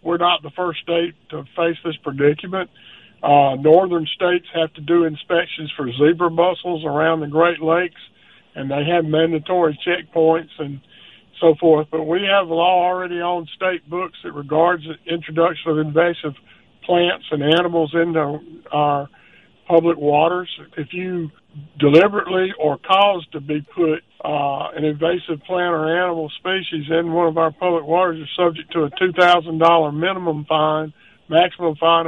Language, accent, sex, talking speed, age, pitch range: English, American, male, 155 wpm, 50-69, 155-175 Hz